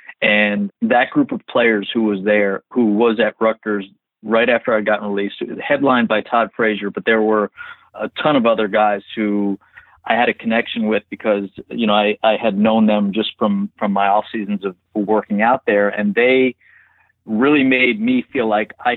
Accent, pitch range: American, 100-115 Hz